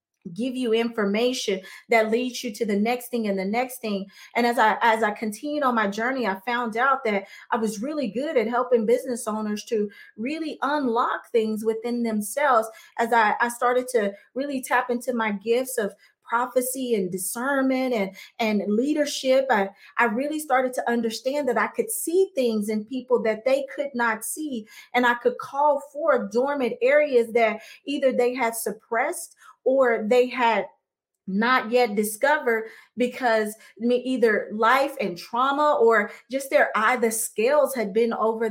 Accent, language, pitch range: American, English, 220-260 Hz